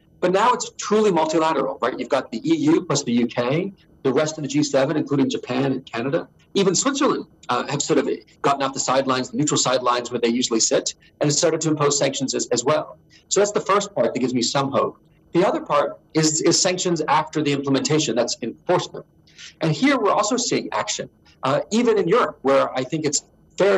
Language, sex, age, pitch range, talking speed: English, male, 40-59, 130-165 Hz, 210 wpm